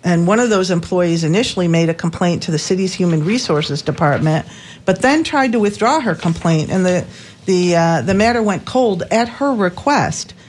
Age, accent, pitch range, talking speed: 50-69, American, 170-220 Hz, 190 wpm